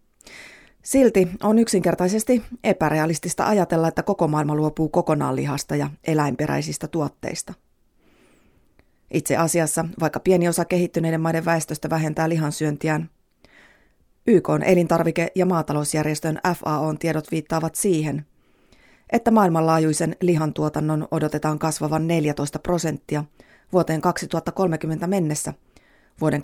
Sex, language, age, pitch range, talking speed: female, Finnish, 30-49, 155-175 Hz, 95 wpm